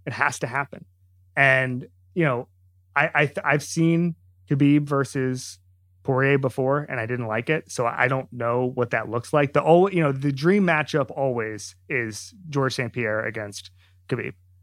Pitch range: 115-145 Hz